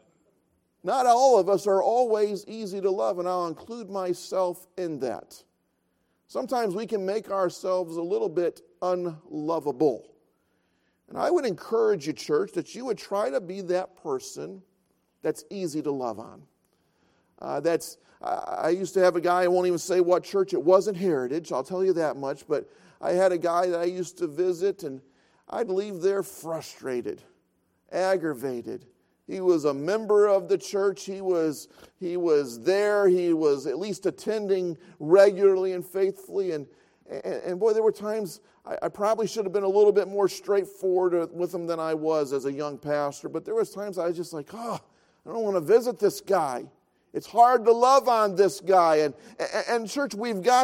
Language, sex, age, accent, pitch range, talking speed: English, male, 50-69, American, 170-225 Hz, 185 wpm